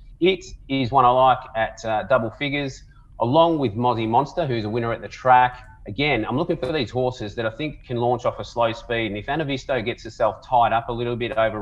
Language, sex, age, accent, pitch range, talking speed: English, male, 30-49, Australian, 110-130 Hz, 240 wpm